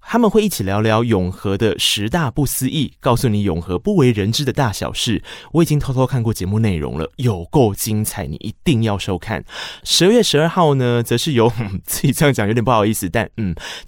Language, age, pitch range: Chinese, 20-39, 105-155 Hz